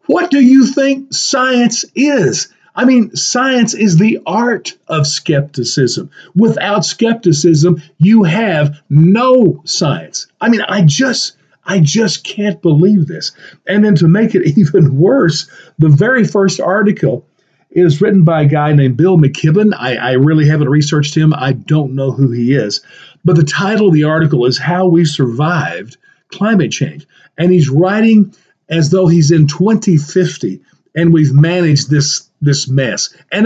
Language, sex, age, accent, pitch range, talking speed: English, male, 50-69, American, 150-195 Hz, 155 wpm